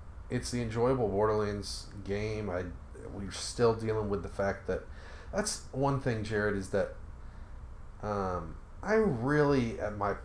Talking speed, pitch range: 140 wpm, 85-110 Hz